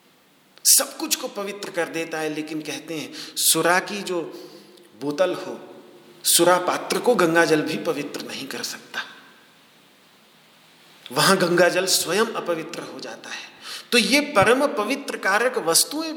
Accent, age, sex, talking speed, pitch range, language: native, 40-59, male, 140 wpm, 155-220 Hz, Hindi